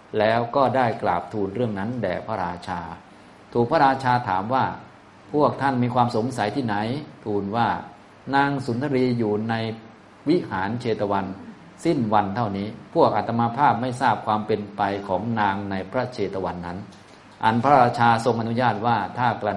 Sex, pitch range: male, 100-125 Hz